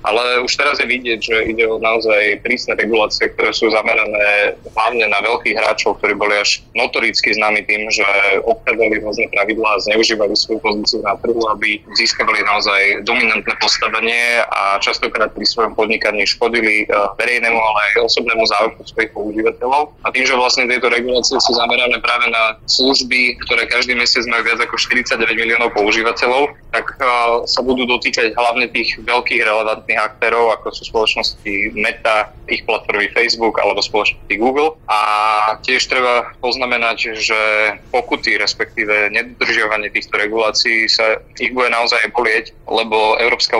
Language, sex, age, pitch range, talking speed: Slovak, male, 20-39, 110-120 Hz, 150 wpm